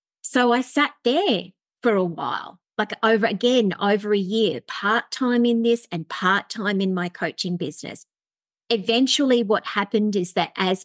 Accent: Australian